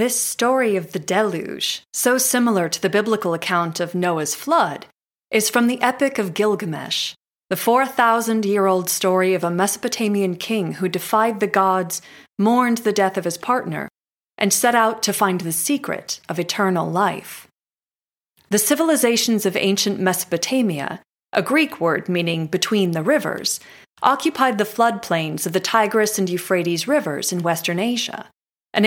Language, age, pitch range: English, 30-49, 185-235 Hz